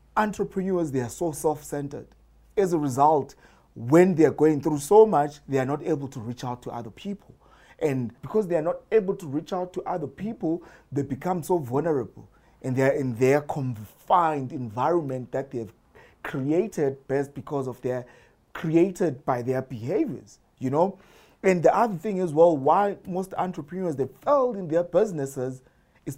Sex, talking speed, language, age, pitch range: male, 170 wpm, English, 30-49, 135-185 Hz